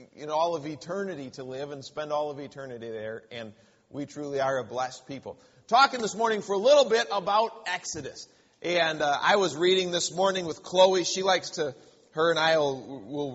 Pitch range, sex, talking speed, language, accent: 150-190 Hz, male, 200 wpm, English, American